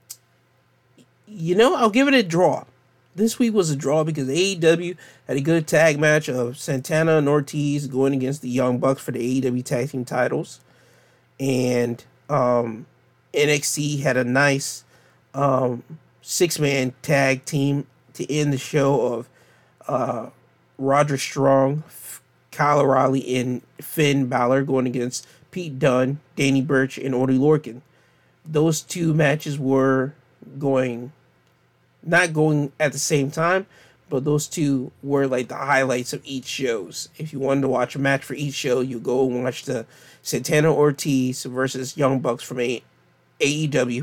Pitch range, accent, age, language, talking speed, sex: 130-150 Hz, American, 30-49, English, 150 wpm, male